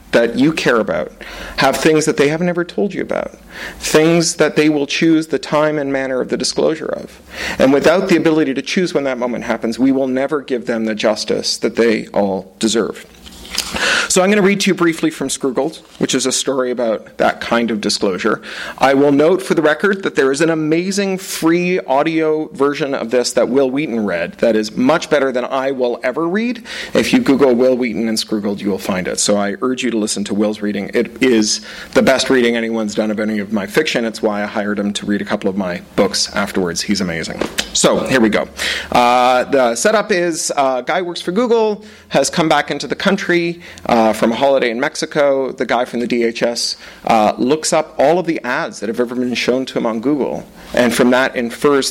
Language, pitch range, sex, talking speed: English, 110-155 Hz, male, 220 wpm